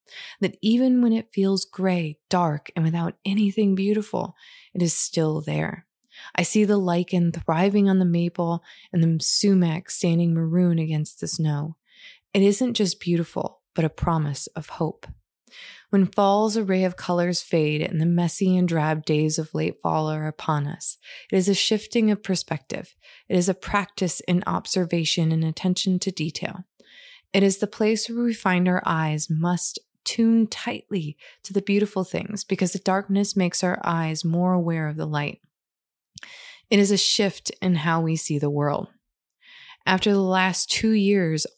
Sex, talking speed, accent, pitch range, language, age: female, 165 wpm, American, 165-200 Hz, English, 20-39